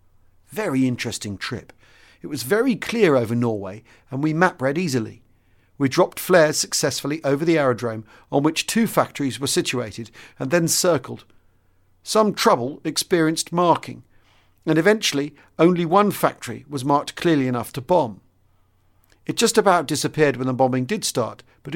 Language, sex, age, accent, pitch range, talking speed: English, male, 50-69, British, 105-155 Hz, 150 wpm